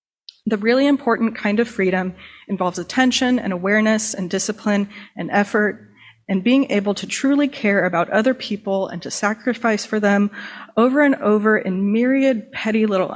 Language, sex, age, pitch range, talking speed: English, female, 30-49, 185-220 Hz, 160 wpm